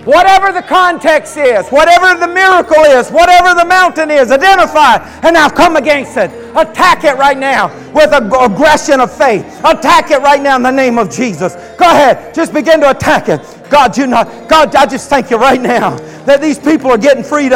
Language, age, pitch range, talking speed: English, 50-69, 255-305 Hz, 200 wpm